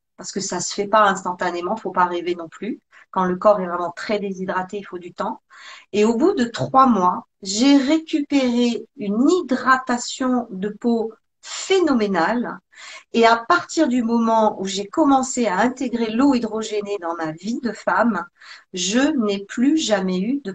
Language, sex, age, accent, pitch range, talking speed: French, female, 50-69, French, 215-270 Hz, 170 wpm